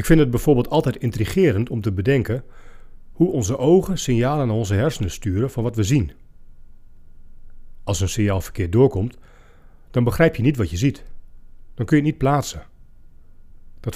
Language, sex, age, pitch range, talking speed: Dutch, male, 40-59, 85-130 Hz, 170 wpm